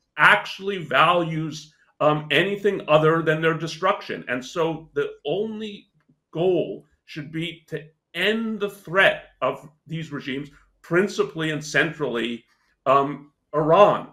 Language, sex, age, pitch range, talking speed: English, male, 50-69, 150-190 Hz, 115 wpm